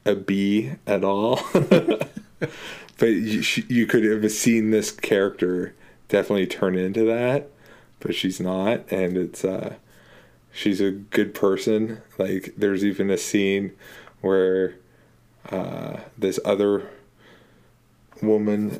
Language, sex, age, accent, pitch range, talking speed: English, male, 20-39, American, 95-105 Hz, 115 wpm